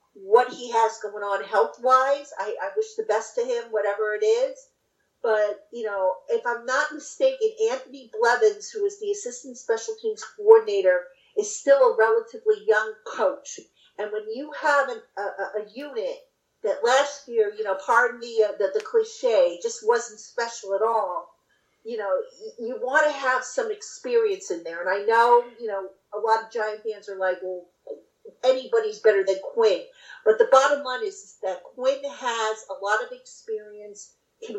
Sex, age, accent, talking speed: female, 50-69, American, 175 wpm